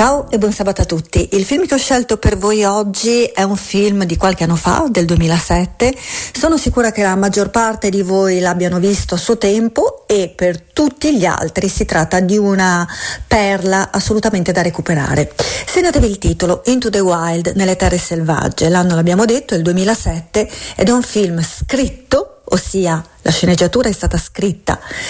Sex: female